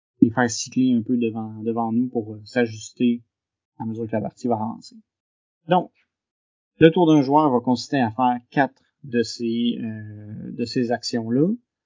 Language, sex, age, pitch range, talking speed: French, male, 30-49, 120-145 Hz, 165 wpm